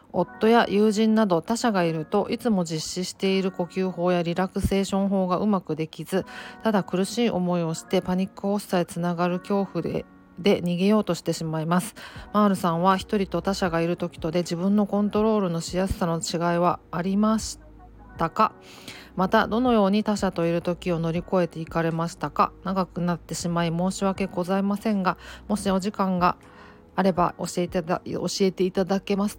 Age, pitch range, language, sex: 40-59, 170-195 Hz, Japanese, female